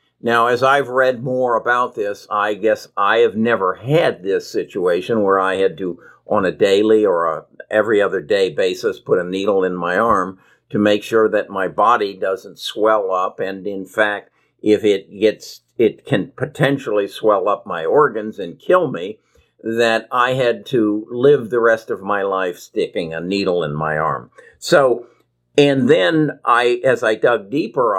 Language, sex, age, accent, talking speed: English, male, 50-69, American, 175 wpm